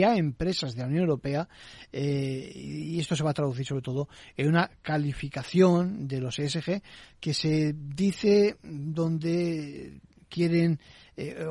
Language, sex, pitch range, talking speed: Spanish, male, 135-165 Hz, 140 wpm